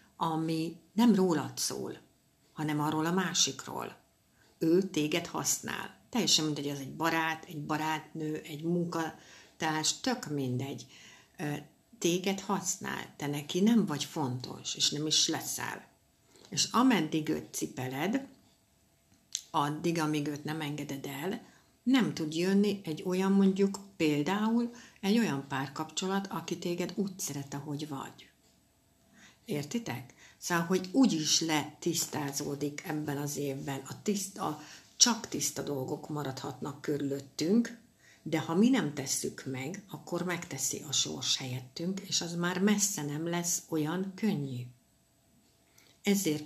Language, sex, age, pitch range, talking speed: Hungarian, female, 60-79, 145-185 Hz, 125 wpm